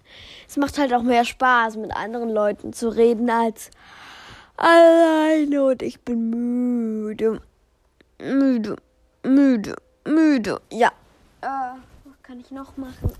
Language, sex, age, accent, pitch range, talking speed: German, female, 20-39, German, 220-280 Hz, 125 wpm